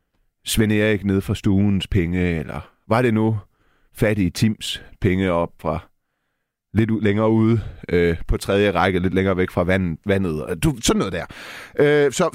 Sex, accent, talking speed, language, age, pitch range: male, native, 165 wpm, Danish, 30-49, 95-130 Hz